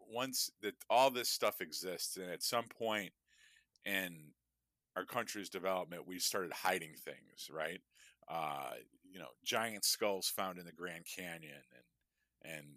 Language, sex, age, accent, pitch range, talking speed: English, male, 40-59, American, 85-125 Hz, 145 wpm